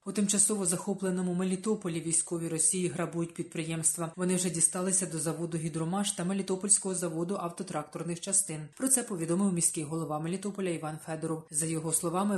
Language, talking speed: Ukrainian, 145 wpm